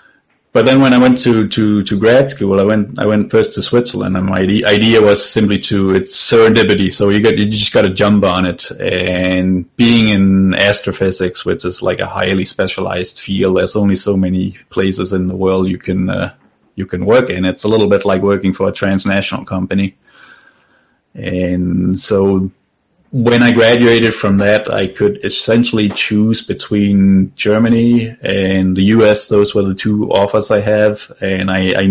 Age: 30-49